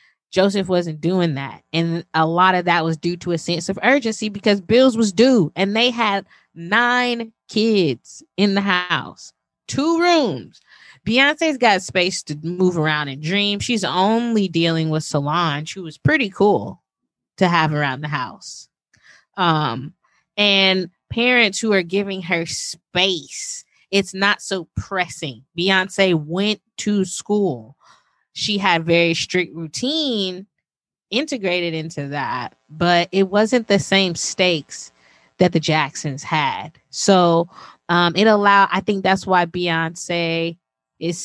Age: 20-39